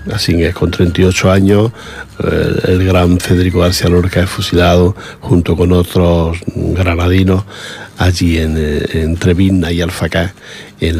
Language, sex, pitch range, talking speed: English, male, 85-95 Hz, 125 wpm